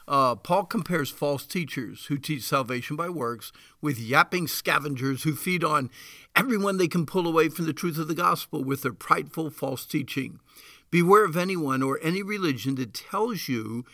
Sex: male